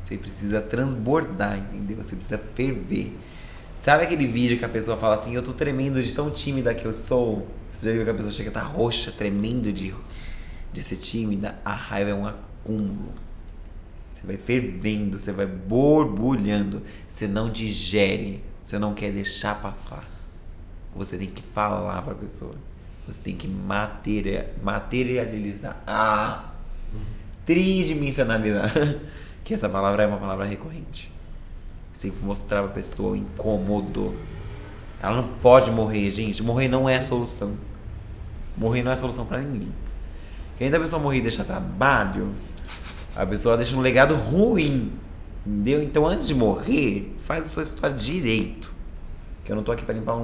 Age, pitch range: 20-39, 95-115 Hz